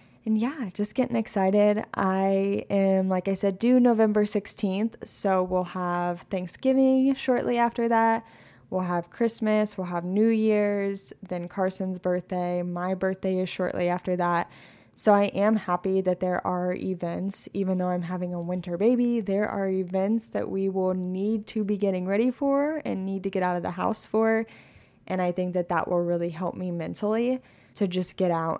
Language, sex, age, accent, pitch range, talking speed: English, female, 10-29, American, 180-215 Hz, 180 wpm